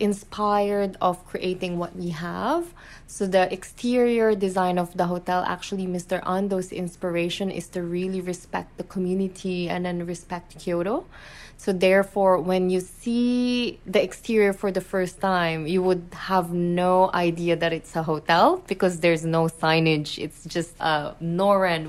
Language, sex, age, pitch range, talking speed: English, female, 20-39, 175-205 Hz, 150 wpm